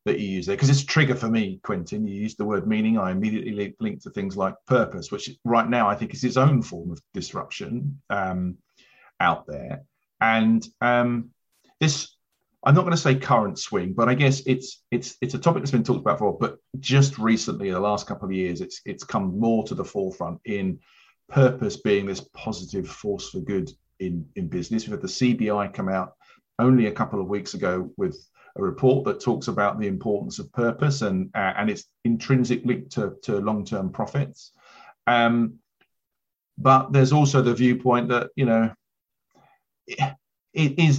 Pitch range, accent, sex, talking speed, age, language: 110-135 Hz, British, male, 190 wpm, 40-59, English